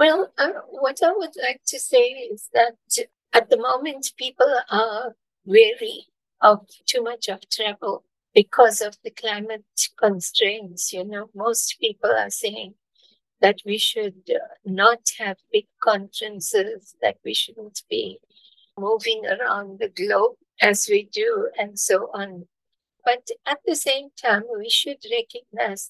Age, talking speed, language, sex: 50-69, 140 wpm, English, female